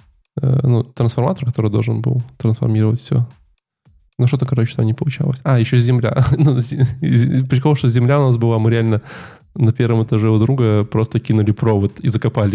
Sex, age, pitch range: male, 20-39, 115-135 Hz